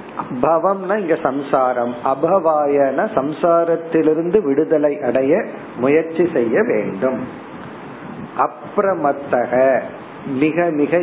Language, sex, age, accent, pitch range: Tamil, male, 50-69, native, 135-175 Hz